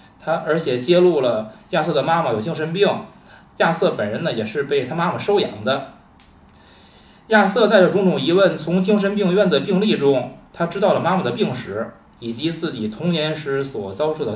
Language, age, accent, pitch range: Chinese, 20-39, native, 150-195 Hz